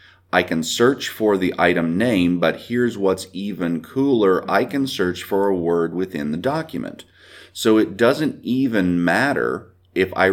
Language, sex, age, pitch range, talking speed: English, male, 40-59, 90-115 Hz, 165 wpm